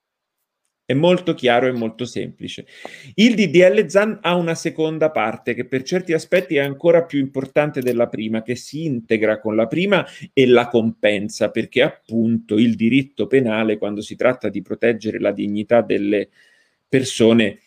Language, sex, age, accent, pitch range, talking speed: Italian, male, 40-59, native, 110-140 Hz, 155 wpm